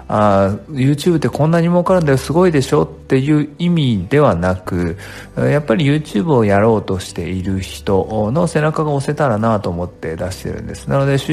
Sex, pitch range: male, 95-130 Hz